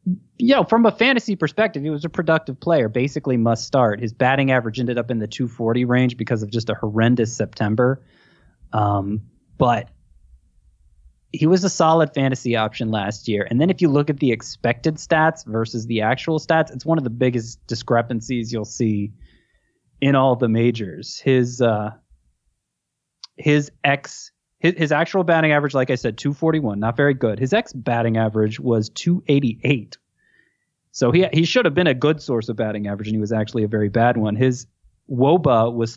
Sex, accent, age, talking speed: male, American, 20-39, 180 wpm